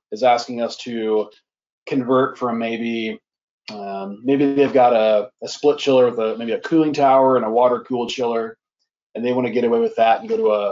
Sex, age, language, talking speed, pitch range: male, 30-49, English, 205 wpm, 115-165 Hz